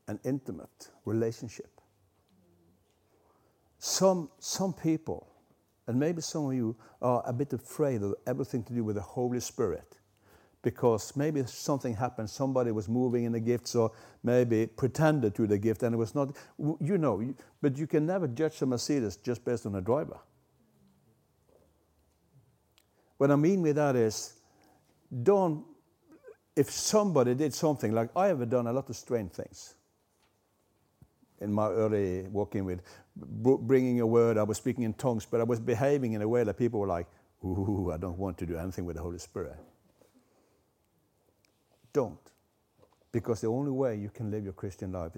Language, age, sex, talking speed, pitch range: English, 60-79, male, 165 wpm, 100-130 Hz